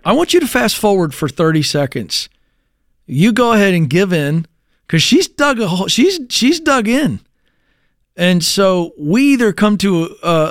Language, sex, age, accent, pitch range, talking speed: English, male, 40-59, American, 150-210 Hz, 160 wpm